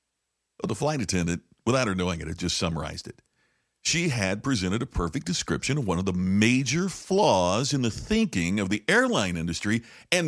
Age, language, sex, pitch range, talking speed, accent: 50-69, English, male, 90-145 Hz, 180 wpm, American